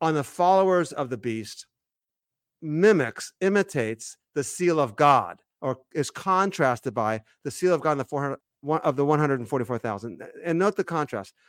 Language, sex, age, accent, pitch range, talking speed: English, male, 40-59, American, 145-185 Hz, 155 wpm